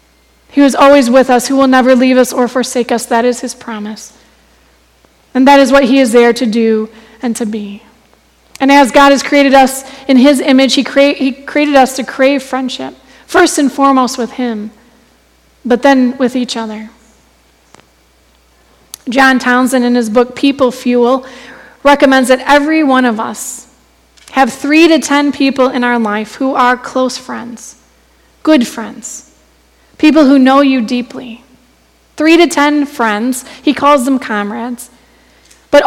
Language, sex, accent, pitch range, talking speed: English, female, American, 240-285 Hz, 160 wpm